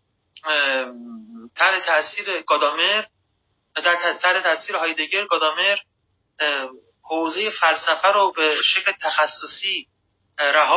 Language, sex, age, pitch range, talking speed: Persian, male, 30-49, 140-180 Hz, 70 wpm